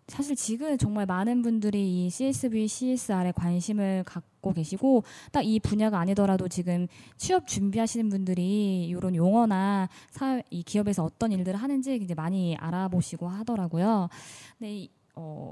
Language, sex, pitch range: Korean, female, 170-230 Hz